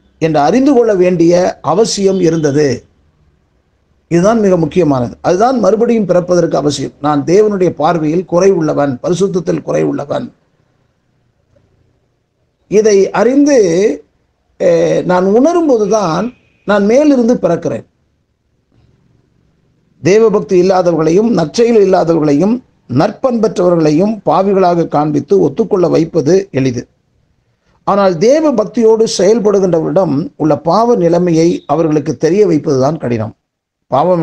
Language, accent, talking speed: Tamil, native, 90 wpm